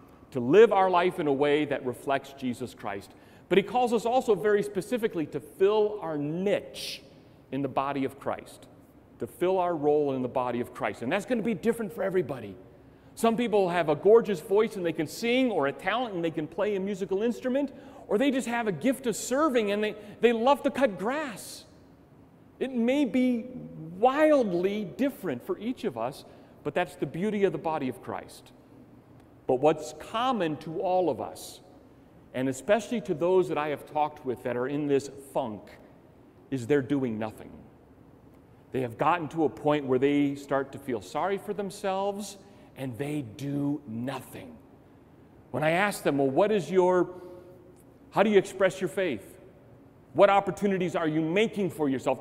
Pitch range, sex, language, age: 140-210 Hz, male, English, 40-59